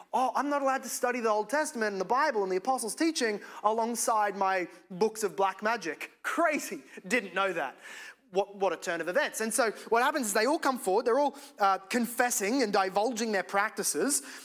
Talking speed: 205 wpm